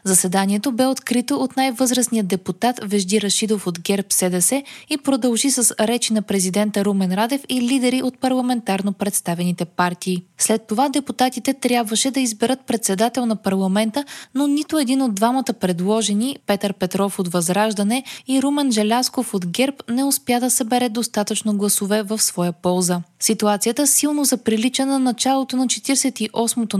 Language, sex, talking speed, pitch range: Bulgarian, female, 150 wpm, 200-260 Hz